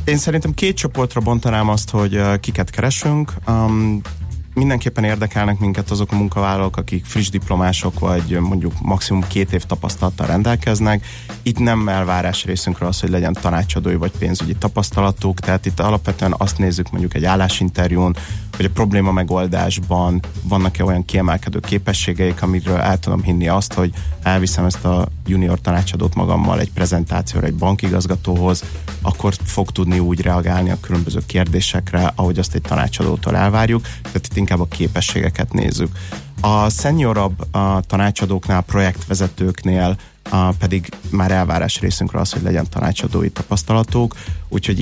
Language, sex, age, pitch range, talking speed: Hungarian, male, 30-49, 90-100 Hz, 140 wpm